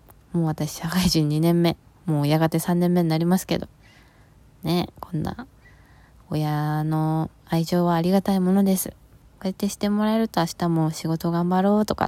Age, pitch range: 20-39, 150-185 Hz